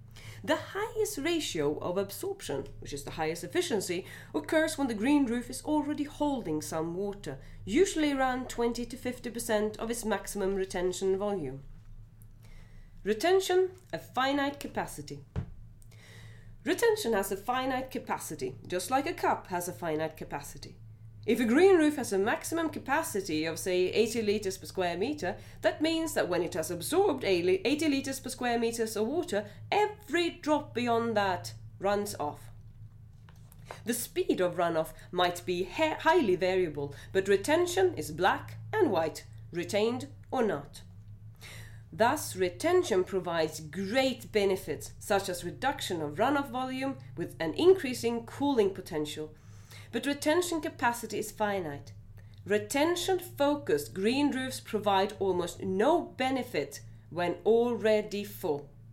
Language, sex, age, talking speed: English, female, 30-49, 135 wpm